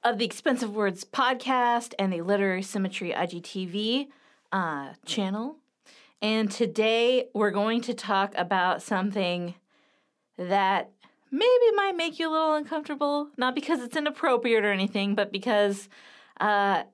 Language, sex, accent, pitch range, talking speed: English, female, American, 195-265 Hz, 130 wpm